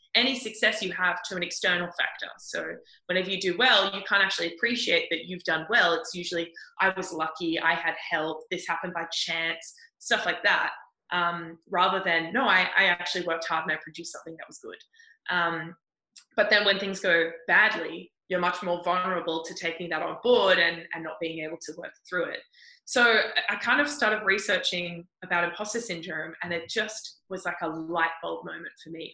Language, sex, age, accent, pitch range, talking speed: English, female, 20-39, Australian, 170-220 Hz, 200 wpm